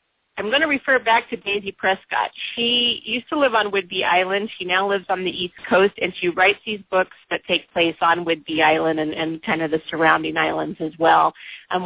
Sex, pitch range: female, 170-215 Hz